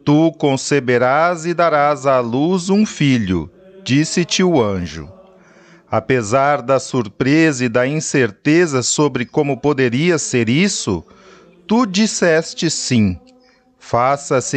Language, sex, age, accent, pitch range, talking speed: Portuguese, male, 40-59, Brazilian, 135-190 Hz, 105 wpm